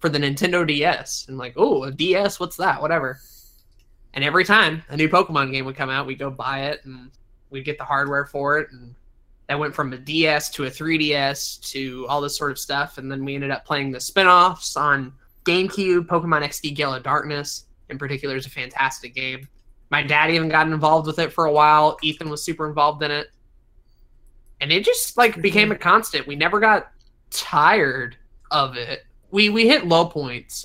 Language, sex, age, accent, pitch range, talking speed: English, male, 20-39, American, 135-160 Hz, 200 wpm